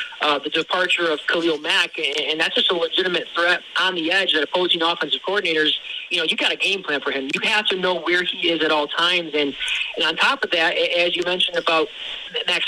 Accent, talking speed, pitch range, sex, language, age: American, 235 wpm, 160-195 Hz, male, English, 30-49